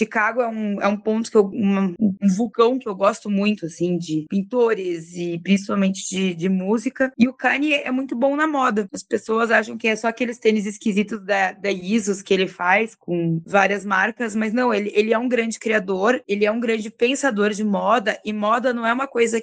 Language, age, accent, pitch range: Portuguese, 20-39, Brazilian, 200-245 Hz